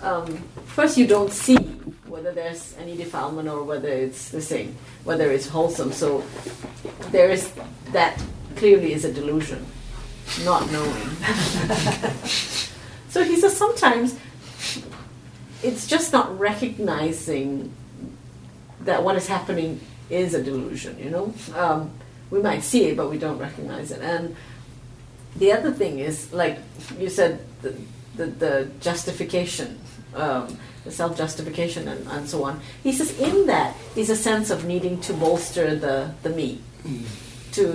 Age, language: 40-59, English